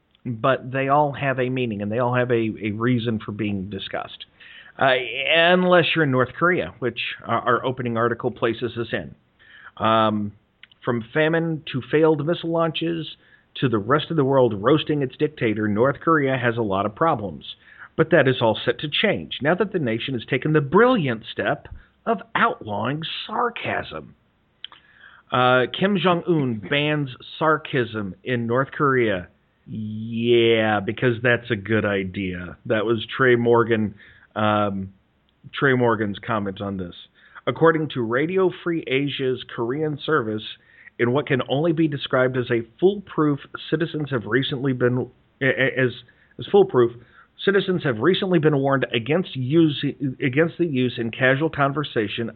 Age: 40-59